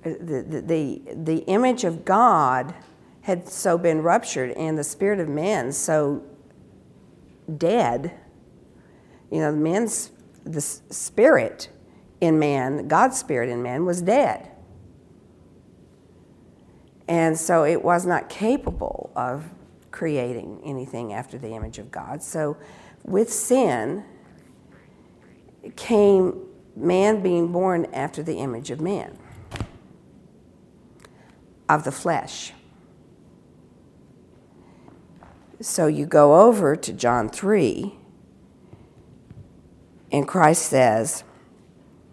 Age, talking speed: 50-69, 95 wpm